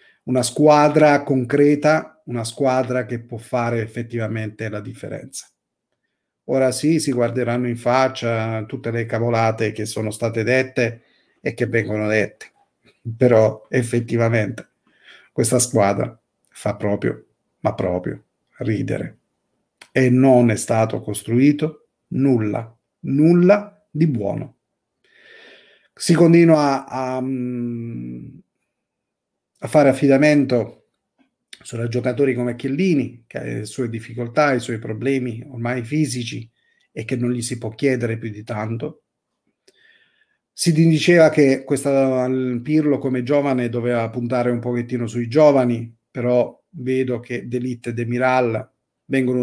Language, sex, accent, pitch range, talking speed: Italian, male, native, 115-140 Hz, 120 wpm